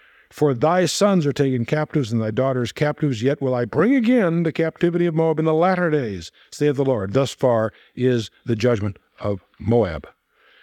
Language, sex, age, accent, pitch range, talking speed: English, male, 60-79, American, 115-145 Hz, 185 wpm